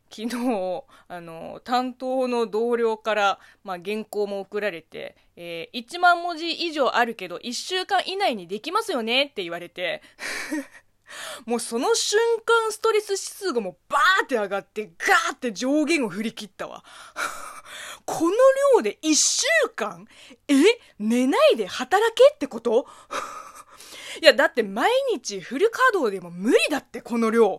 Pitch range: 225-375 Hz